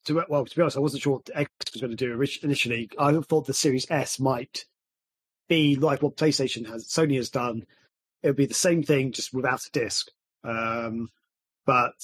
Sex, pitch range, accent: male, 125-155 Hz, British